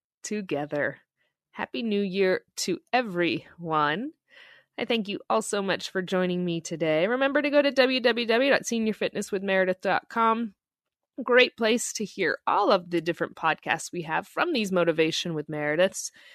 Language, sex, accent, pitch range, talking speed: English, female, American, 175-255 Hz, 135 wpm